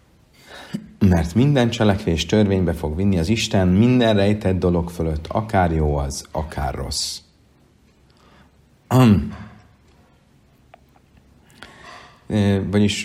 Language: Hungarian